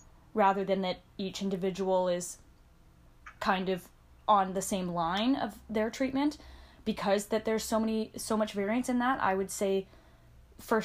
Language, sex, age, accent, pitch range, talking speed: English, female, 10-29, American, 195-225 Hz, 160 wpm